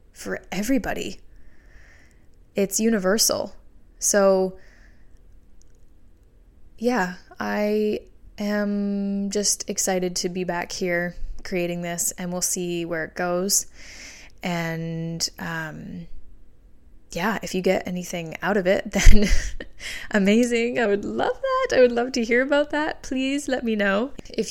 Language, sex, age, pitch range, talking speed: English, female, 20-39, 165-210 Hz, 120 wpm